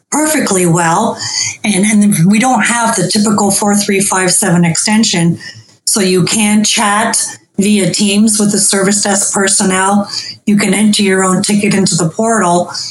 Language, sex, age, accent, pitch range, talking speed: English, female, 40-59, American, 180-210 Hz, 145 wpm